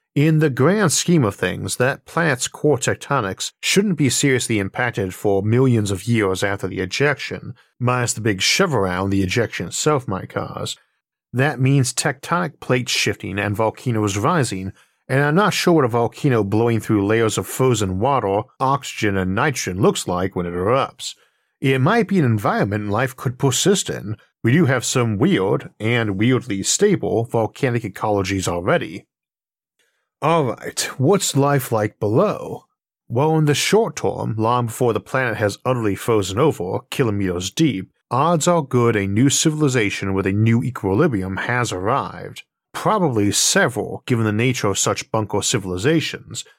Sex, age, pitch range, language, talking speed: male, 50-69, 105-140 Hz, English, 155 wpm